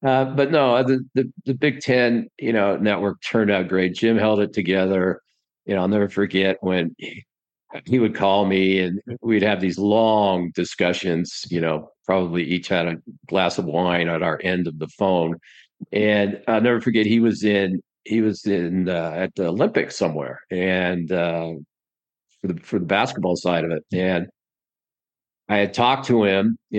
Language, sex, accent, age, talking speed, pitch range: English, male, American, 50-69, 185 wpm, 90-110 Hz